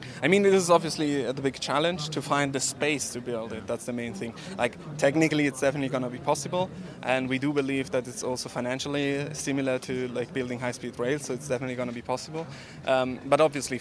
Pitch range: 125-150 Hz